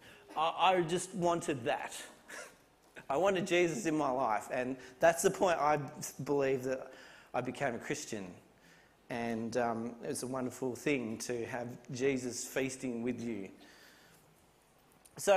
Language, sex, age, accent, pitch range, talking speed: English, male, 40-59, Australian, 145-200 Hz, 135 wpm